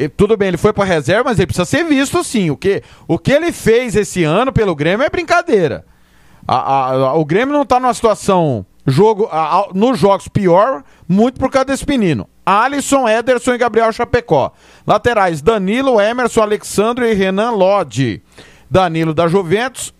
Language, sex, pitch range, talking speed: Portuguese, male, 170-225 Hz, 170 wpm